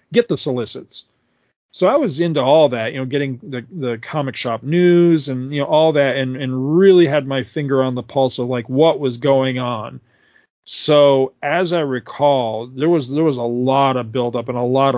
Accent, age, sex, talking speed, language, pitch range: American, 40-59, male, 210 wpm, English, 120-145 Hz